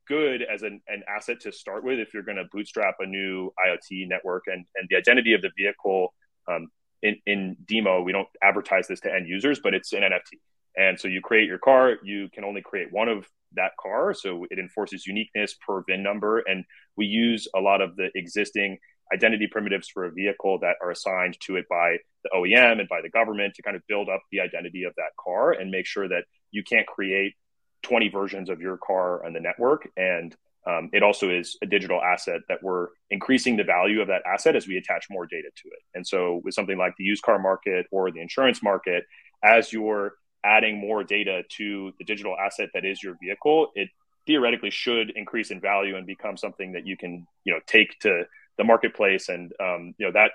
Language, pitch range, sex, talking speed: English, 95-110 Hz, male, 215 wpm